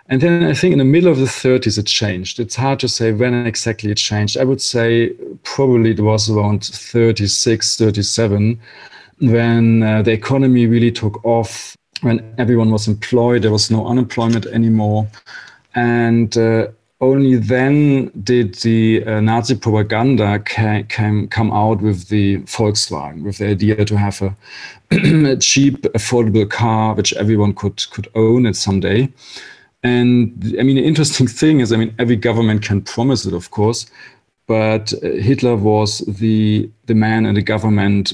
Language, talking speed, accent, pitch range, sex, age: English, 160 wpm, German, 105-120 Hz, male, 40-59